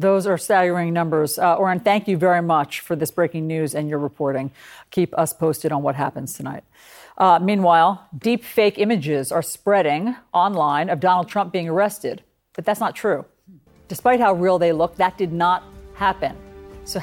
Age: 50-69